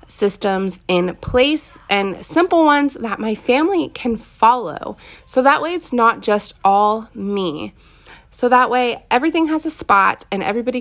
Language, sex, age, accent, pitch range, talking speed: English, female, 20-39, American, 190-235 Hz, 155 wpm